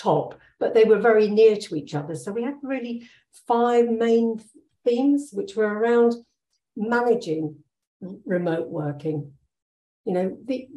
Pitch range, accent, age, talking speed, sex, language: 175-230 Hz, British, 60-79, 140 wpm, female, German